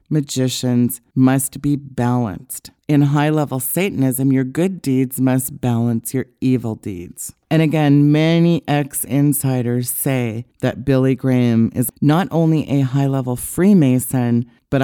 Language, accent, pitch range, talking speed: English, American, 130-155 Hz, 120 wpm